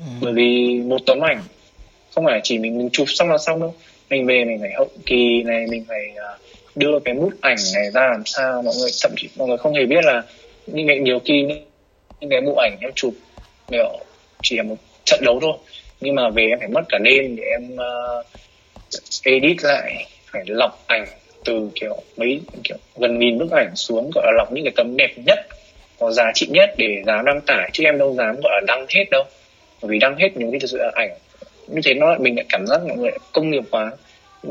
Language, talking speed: Vietnamese, 225 wpm